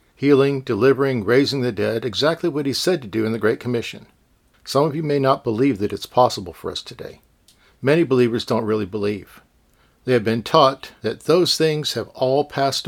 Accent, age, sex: American, 50-69, male